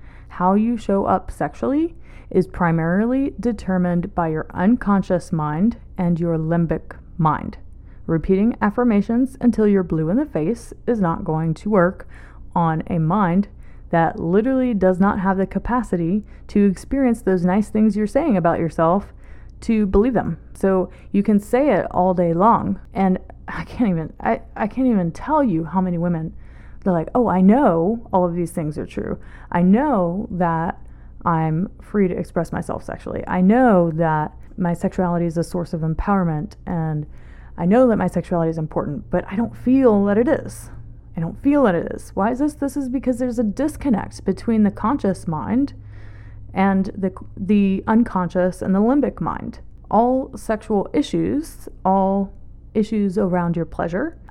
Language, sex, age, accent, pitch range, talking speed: English, female, 30-49, American, 170-225 Hz, 170 wpm